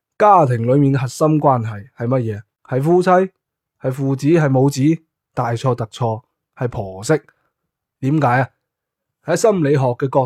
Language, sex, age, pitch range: Chinese, male, 20-39, 115-150 Hz